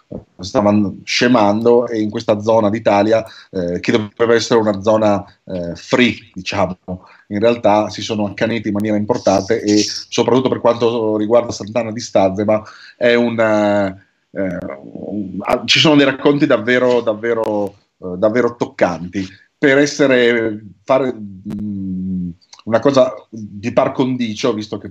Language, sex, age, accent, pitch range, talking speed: Italian, male, 30-49, native, 100-120 Hz, 135 wpm